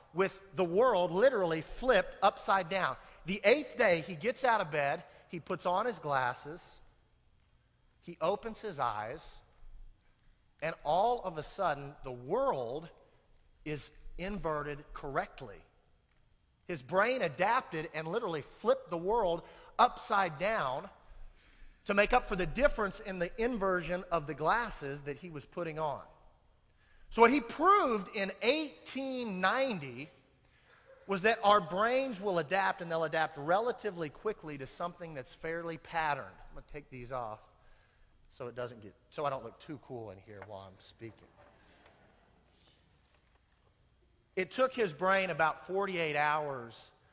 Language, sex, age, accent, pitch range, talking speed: English, male, 40-59, American, 140-200 Hz, 140 wpm